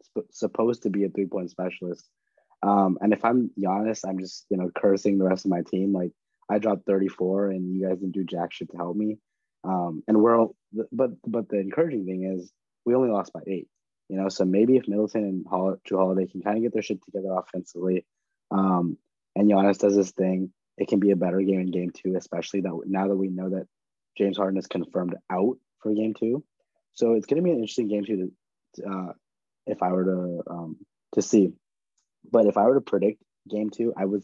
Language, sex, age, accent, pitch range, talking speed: English, male, 20-39, American, 90-105 Hz, 220 wpm